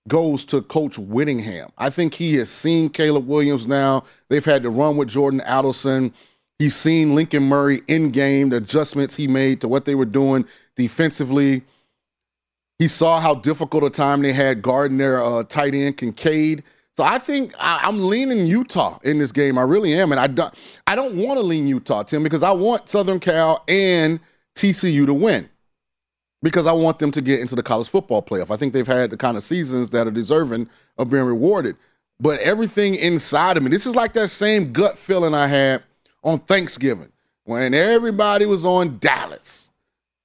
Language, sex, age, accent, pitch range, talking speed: English, male, 30-49, American, 130-165 Hz, 185 wpm